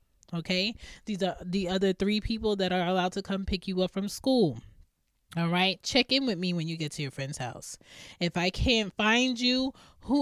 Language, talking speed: English, 210 wpm